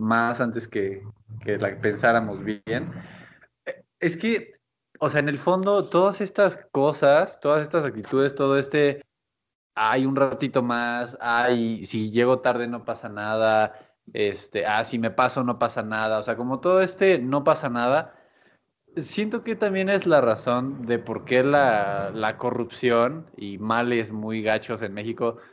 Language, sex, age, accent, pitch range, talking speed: Spanish, male, 20-39, Mexican, 110-145 Hz, 155 wpm